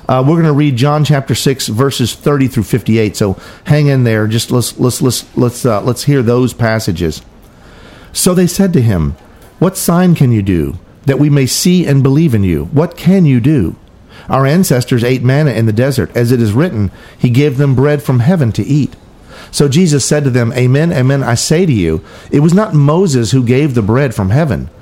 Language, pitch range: English, 115-150 Hz